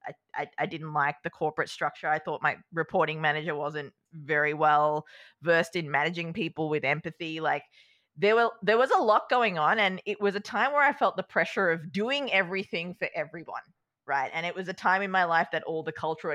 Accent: Australian